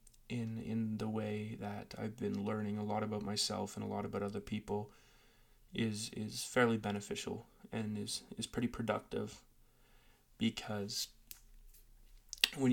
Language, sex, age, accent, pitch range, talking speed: English, male, 20-39, American, 110-120 Hz, 135 wpm